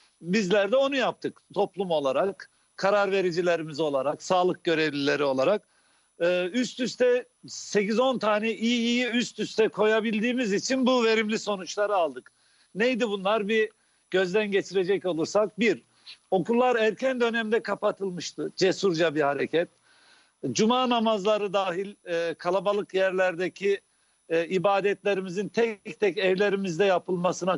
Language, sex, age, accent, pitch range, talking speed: Turkish, male, 50-69, native, 185-220 Hz, 110 wpm